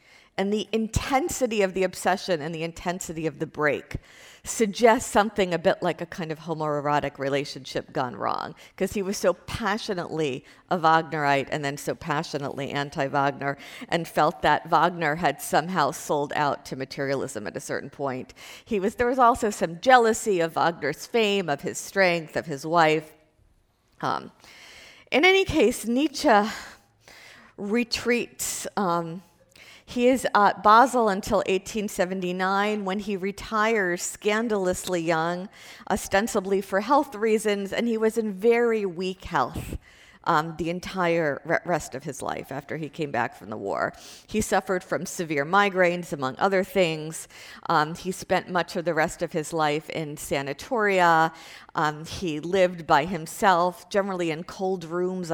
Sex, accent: female, American